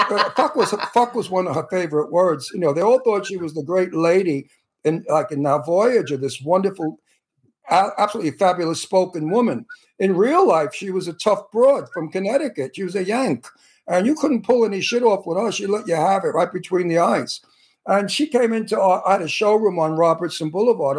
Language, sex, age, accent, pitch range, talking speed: English, male, 60-79, American, 165-220 Hz, 215 wpm